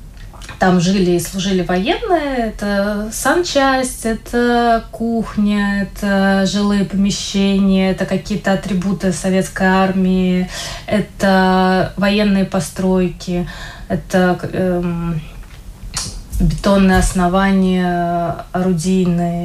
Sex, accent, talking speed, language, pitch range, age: female, native, 75 wpm, Russian, 180-210 Hz, 20-39